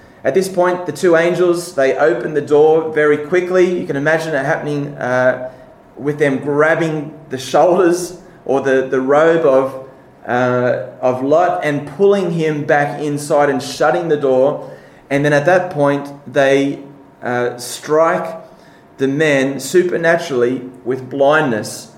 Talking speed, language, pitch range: 145 wpm, English, 130-165 Hz